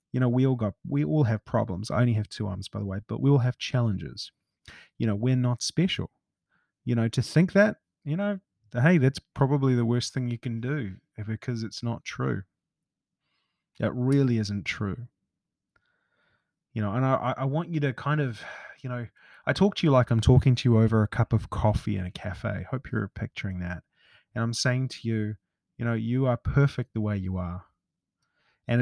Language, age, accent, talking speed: English, 20-39, Australian, 210 wpm